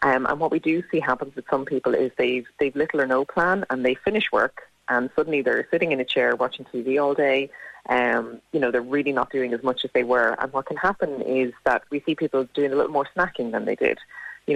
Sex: female